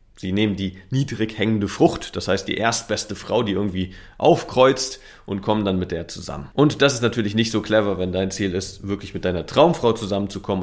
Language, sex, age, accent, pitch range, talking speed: German, male, 30-49, German, 95-110 Hz, 205 wpm